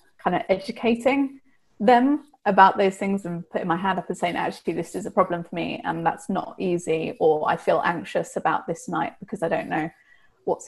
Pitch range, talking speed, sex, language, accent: 190-235 Hz, 200 wpm, female, English, British